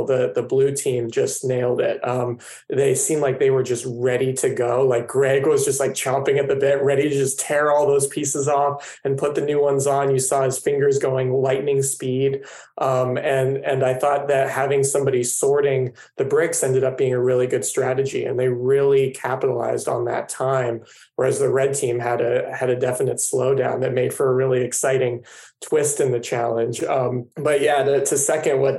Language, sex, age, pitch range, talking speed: English, male, 20-39, 130-165 Hz, 205 wpm